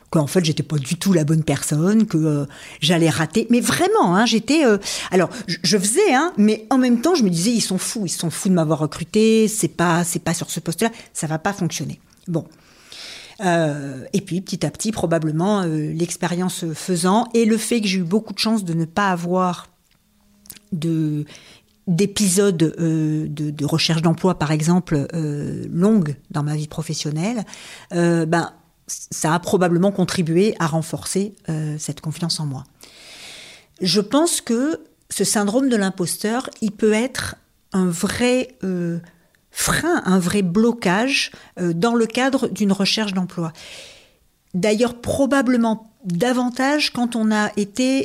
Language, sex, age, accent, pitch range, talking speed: French, female, 40-59, French, 165-220 Hz, 165 wpm